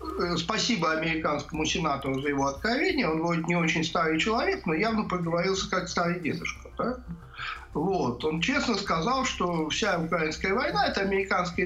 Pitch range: 155-225 Hz